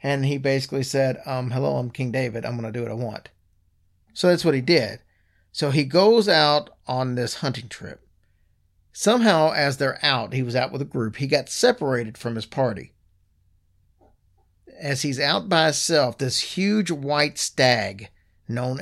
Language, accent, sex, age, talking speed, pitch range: English, American, male, 40-59, 175 wpm, 90-145 Hz